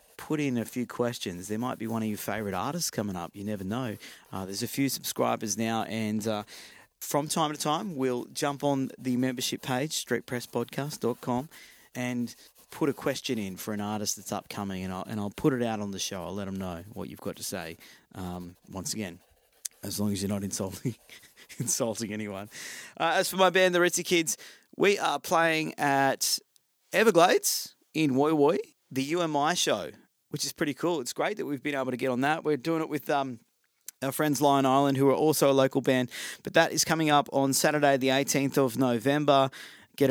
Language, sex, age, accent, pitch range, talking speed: English, male, 30-49, Australian, 115-155 Hz, 205 wpm